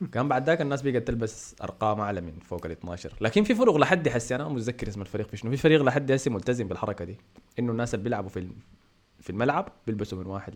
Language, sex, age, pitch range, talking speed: Arabic, male, 20-39, 95-125 Hz, 235 wpm